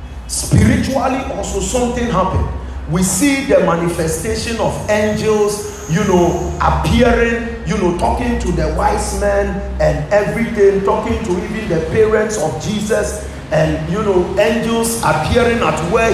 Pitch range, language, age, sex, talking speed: 165-220 Hz, English, 40-59, male, 135 wpm